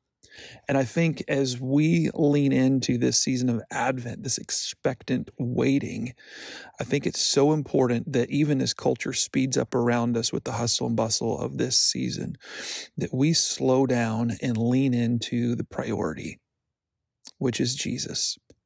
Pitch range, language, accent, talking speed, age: 120-140 Hz, English, American, 150 wpm, 40-59